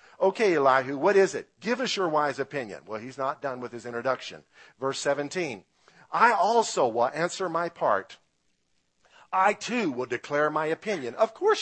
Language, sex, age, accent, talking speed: English, male, 50-69, American, 170 wpm